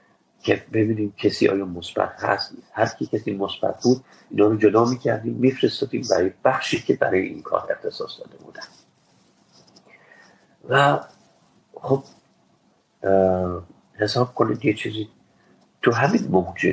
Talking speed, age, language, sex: 120 wpm, 50-69, Persian, male